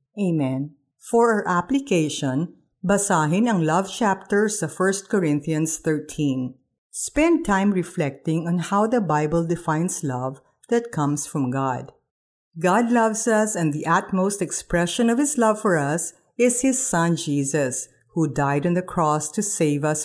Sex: female